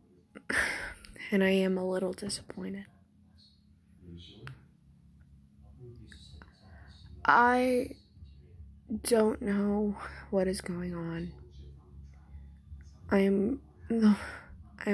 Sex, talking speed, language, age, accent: female, 65 wpm, English, 20-39, American